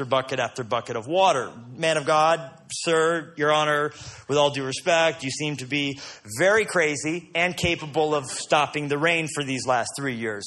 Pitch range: 145-170 Hz